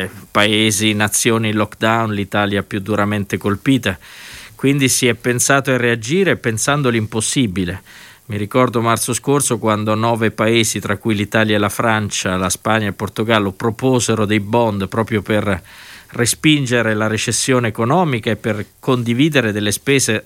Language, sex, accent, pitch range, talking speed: Italian, male, native, 110-140 Hz, 140 wpm